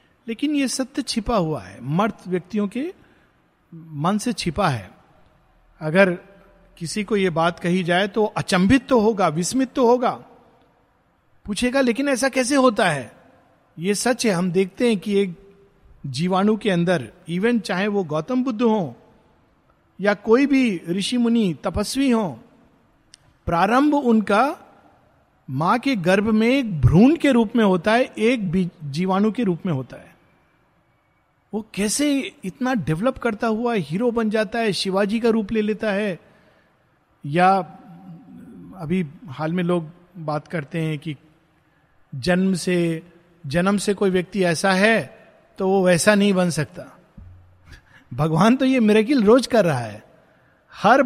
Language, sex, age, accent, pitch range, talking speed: Hindi, male, 50-69, native, 175-235 Hz, 145 wpm